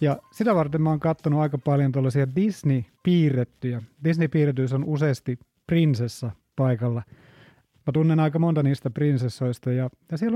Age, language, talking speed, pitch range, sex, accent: 30-49, Finnish, 140 wpm, 130-165 Hz, male, native